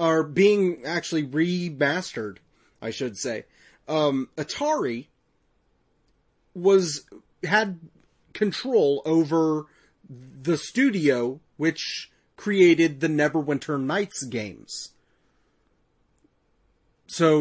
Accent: American